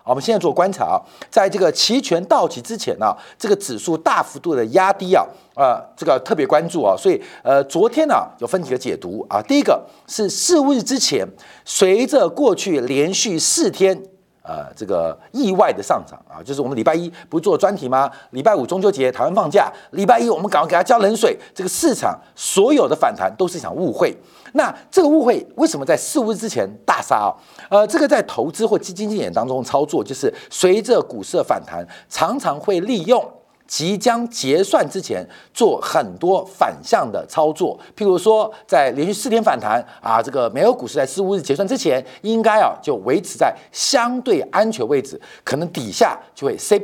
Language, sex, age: Chinese, male, 50-69